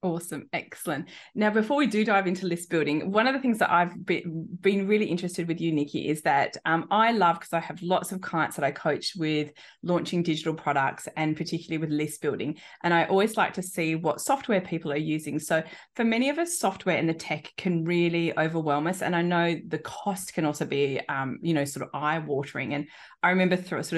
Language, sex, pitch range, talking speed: English, female, 155-190 Hz, 220 wpm